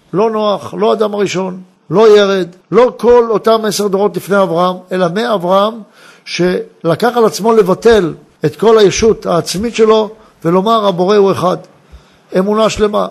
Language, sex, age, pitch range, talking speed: Hebrew, male, 60-79, 180-220 Hz, 140 wpm